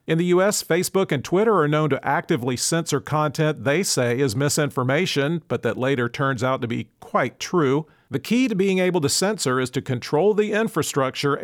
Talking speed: 195 wpm